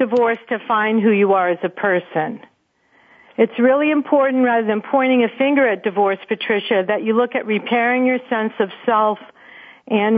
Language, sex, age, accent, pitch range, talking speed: English, female, 50-69, American, 215-270 Hz, 175 wpm